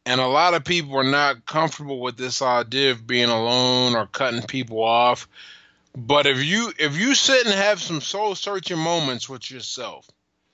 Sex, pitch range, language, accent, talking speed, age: male, 135-200 Hz, English, American, 180 wpm, 20-39